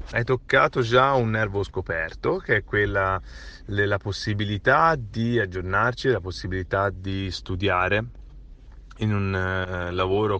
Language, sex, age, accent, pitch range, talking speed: Italian, male, 30-49, native, 90-105 Hz, 115 wpm